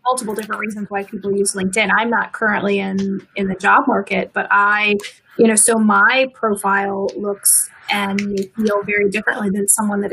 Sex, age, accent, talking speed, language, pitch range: female, 20-39, American, 185 wpm, English, 190-210 Hz